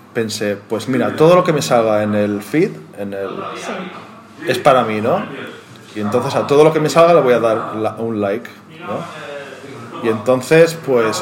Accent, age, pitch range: Spanish, 20-39, 110-150 Hz